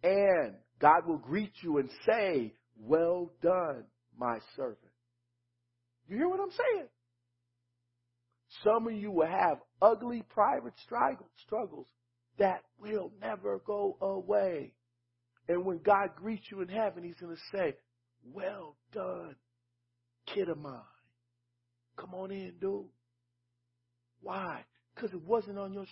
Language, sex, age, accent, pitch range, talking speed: English, male, 50-69, American, 120-180 Hz, 125 wpm